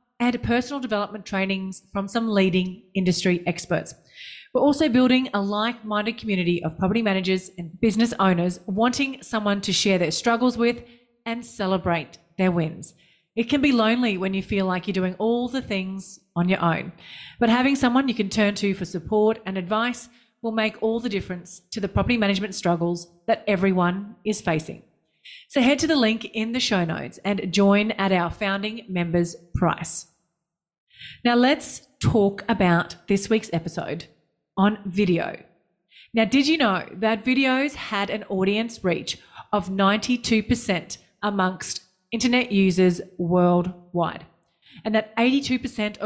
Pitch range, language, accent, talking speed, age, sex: 185-230 Hz, English, Australian, 150 wpm, 30-49, female